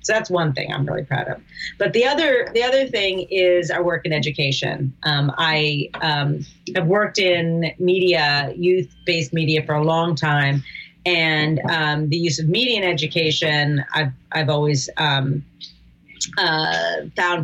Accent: American